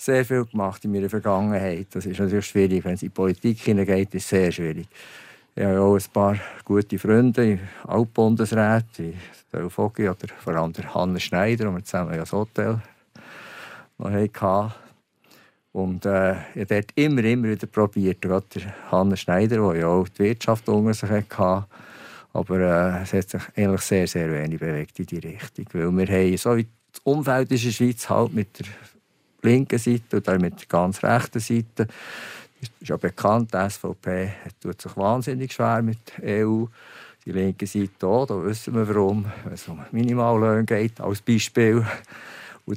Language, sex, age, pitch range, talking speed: German, male, 50-69, 95-115 Hz, 180 wpm